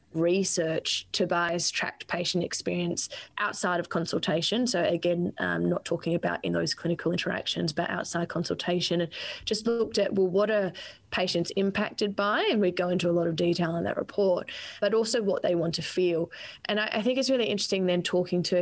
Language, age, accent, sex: English, 20-39, Australian, female